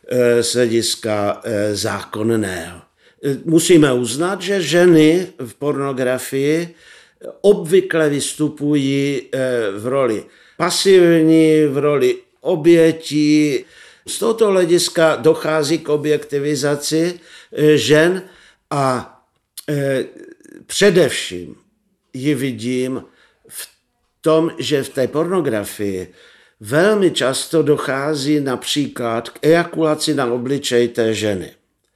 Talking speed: 85 wpm